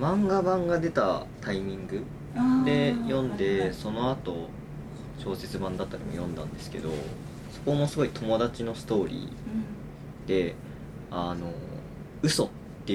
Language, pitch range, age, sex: Japanese, 95-145 Hz, 20-39, male